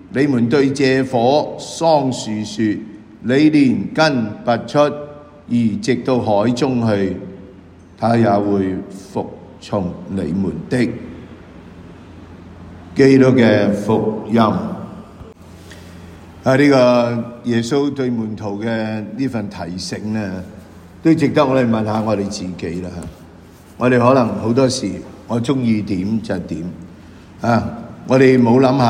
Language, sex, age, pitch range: English, male, 50-69, 100-125 Hz